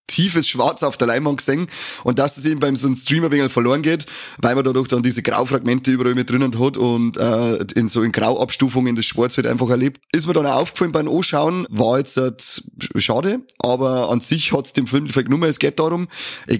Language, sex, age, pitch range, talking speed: German, male, 30-49, 120-150 Hz, 225 wpm